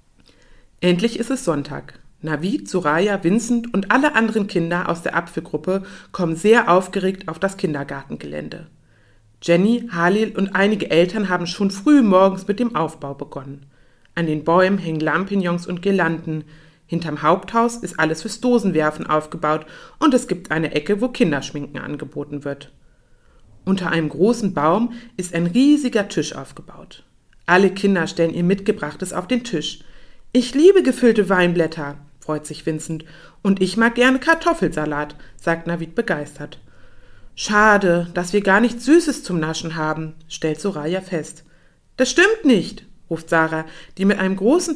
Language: German